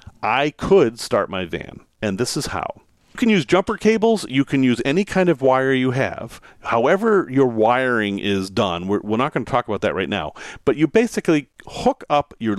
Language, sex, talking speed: English, male, 210 wpm